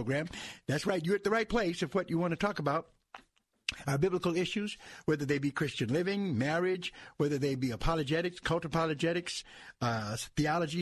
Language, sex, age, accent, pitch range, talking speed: English, male, 60-79, American, 135-180 Hz, 175 wpm